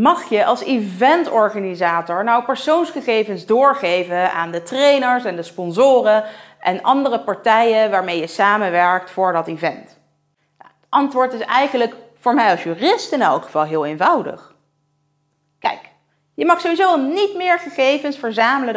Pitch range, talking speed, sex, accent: 175-245 Hz, 135 wpm, female, Dutch